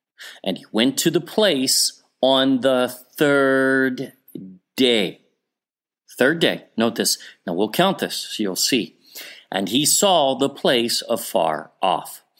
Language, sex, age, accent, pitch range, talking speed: English, male, 40-59, American, 120-170 Hz, 130 wpm